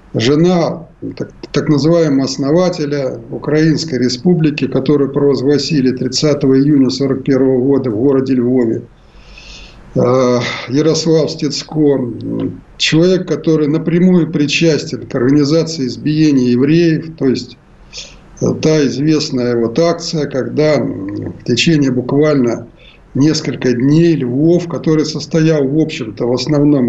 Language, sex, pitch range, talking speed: Russian, male, 130-160 Hz, 100 wpm